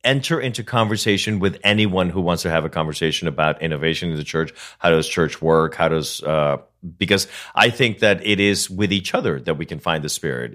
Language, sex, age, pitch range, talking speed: English, male, 40-59, 85-110 Hz, 215 wpm